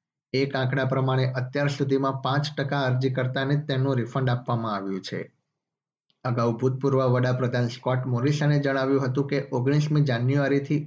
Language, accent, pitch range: Gujarati, native, 125-145 Hz